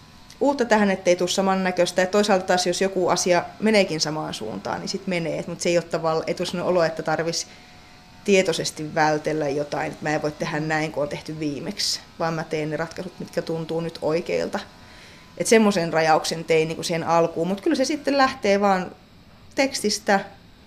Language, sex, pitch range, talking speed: Finnish, female, 155-190 Hz, 175 wpm